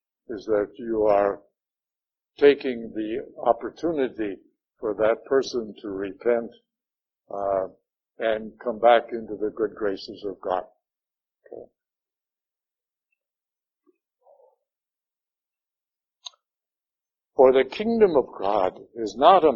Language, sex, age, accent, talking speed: English, male, 60-79, American, 90 wpm